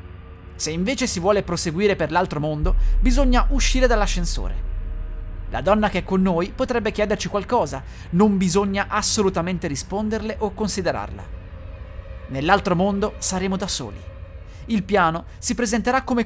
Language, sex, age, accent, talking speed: Italian, male, 30-49, native, 135 wpm